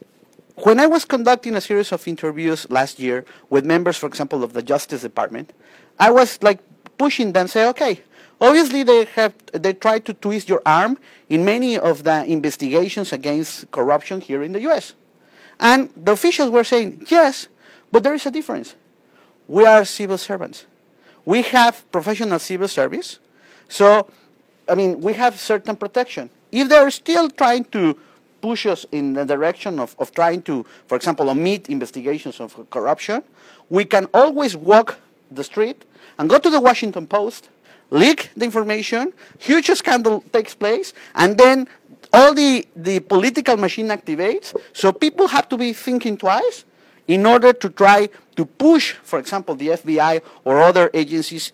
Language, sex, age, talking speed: English, male, 50-69, 160 wpm